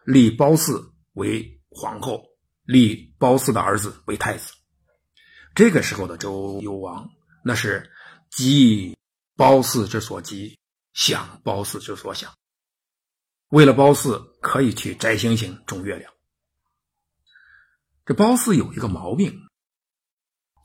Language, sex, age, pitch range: Chinese, male, 50-69, 100-150 Hz